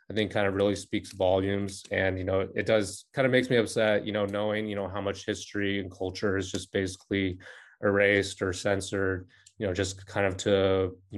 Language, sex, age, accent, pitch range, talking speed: English, male, 20-39, American, 100-110 Hz, 215 wpm